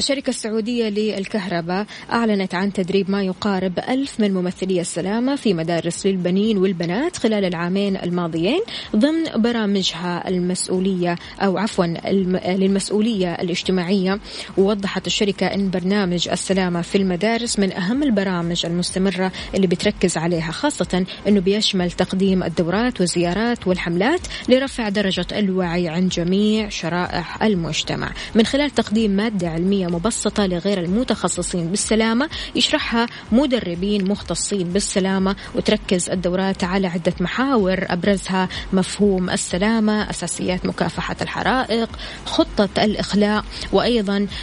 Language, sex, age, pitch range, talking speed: Arabic, female, 20-39, 180-215 Hz, 110 wpm